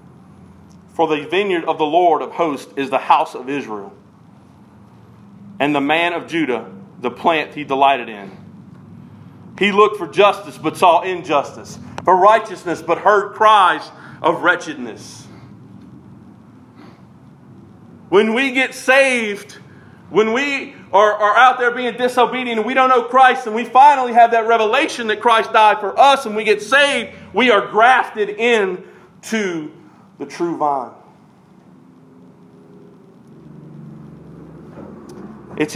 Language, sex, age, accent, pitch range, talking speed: English, male, 40-59, American, 170-235 Hz, 130 wpm